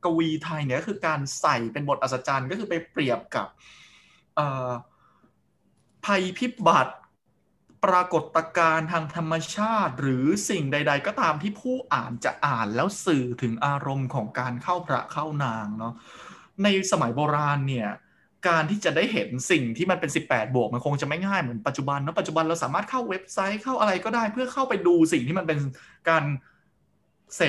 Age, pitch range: 20-39, 135-195 Hz